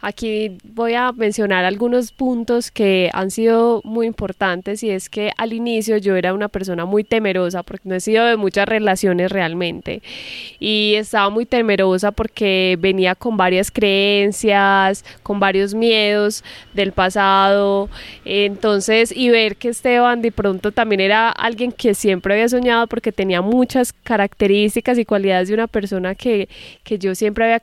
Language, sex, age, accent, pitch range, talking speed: Spanish, female, 10-29, Colombian, 195-230 Hz, 155 wpm